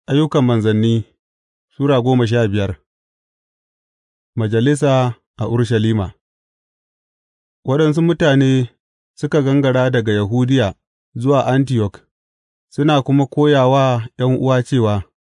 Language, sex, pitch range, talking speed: English, male, 105-140 Hz, 80 wpm